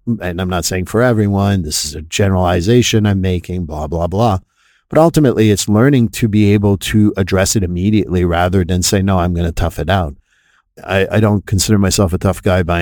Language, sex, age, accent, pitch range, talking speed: English, male, 50-69, American, 90-110 Hz, 210 wpm